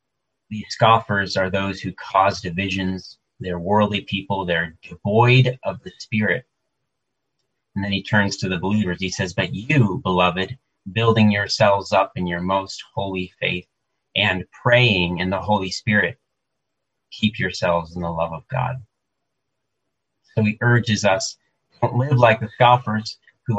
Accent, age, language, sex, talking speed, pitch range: American, 30-49, English, male, 150 wpm, 95-120 Hz